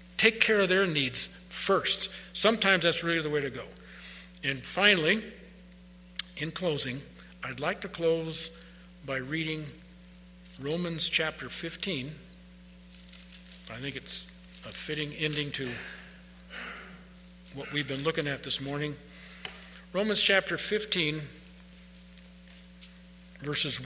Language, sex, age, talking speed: English, male, 50-69, 110 wpm